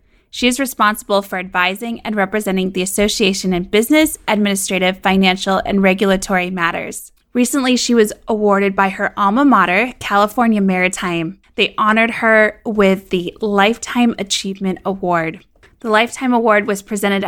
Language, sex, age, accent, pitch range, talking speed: English, female, 20-39, American, 190-230 Hz, 135 wpm